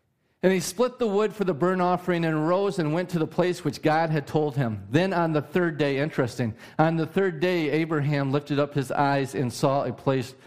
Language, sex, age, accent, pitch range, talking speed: English, male, 40-59, American, 125-175 Hz, 230 wpm